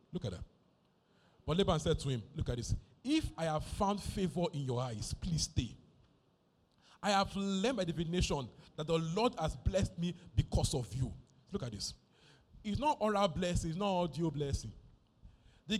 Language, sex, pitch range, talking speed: English, male, 125-195 Hz, 180 wpm